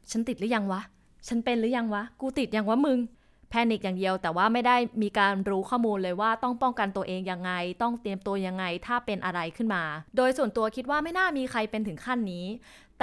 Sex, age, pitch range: female, 20-39, 205-265 Hz